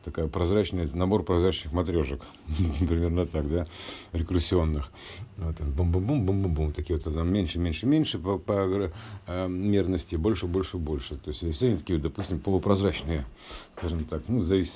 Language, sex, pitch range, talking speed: Russian, male, 80-100 Hz, 130 wpm